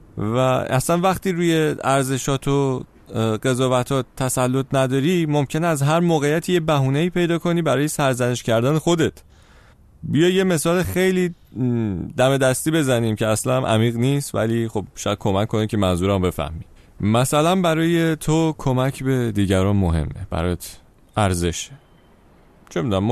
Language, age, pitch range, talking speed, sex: Persian, 30-49, 100-140 Hz, 140 wpm, male